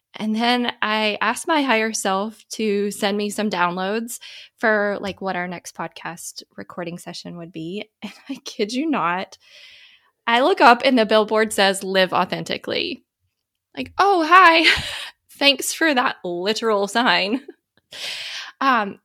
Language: English